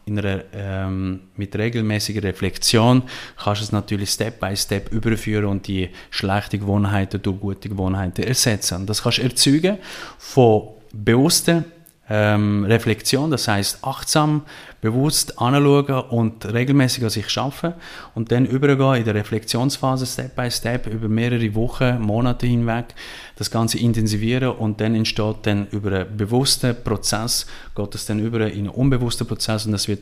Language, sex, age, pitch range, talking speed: German, male, 30-49, 105-125 Hz, 150 wpm